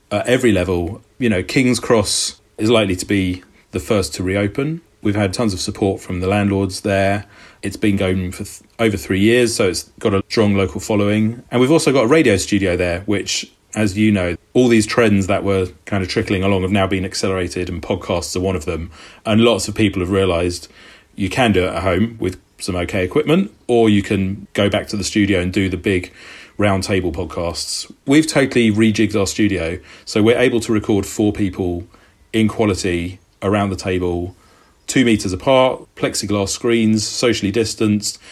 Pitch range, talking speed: 95-110 Hz, 195 wpm